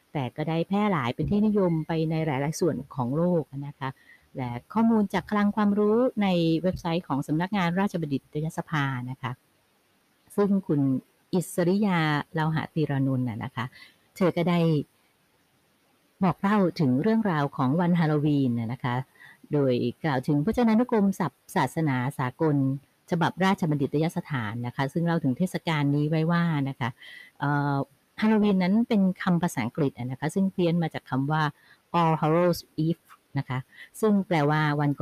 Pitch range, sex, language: 135-175 Hz, female, Thai